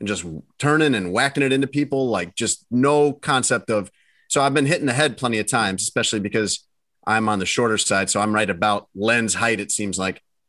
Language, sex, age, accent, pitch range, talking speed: English, male, 30-49, American, 105-130 Hz, 215 wpm